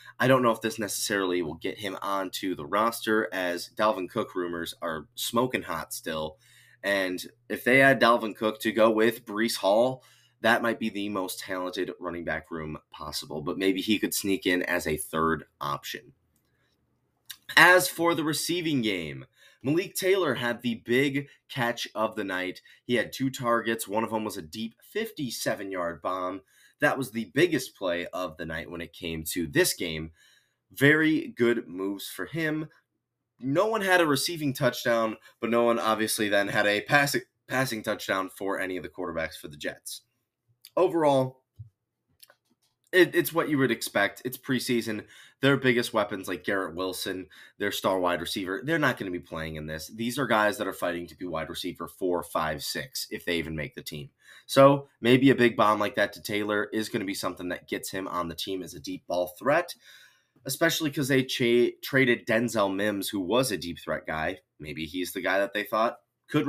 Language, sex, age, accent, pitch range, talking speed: English, male, 30-49, American, 95-130 Hz, 190 wpm